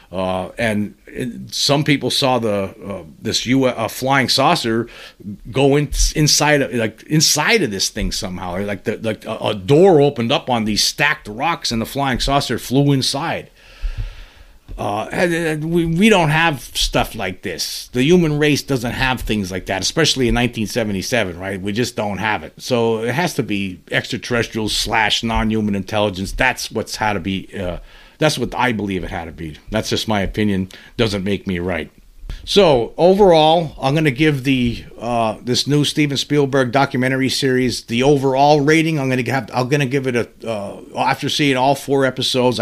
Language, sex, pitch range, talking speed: English, male, 110-140 Hz, 180 wpm